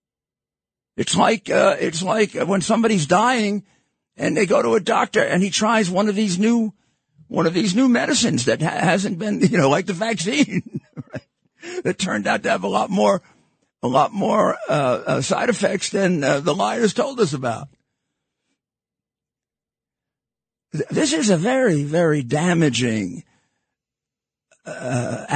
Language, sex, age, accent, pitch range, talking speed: English, male, 50-69, American, 135-210 Hz, 155 wpm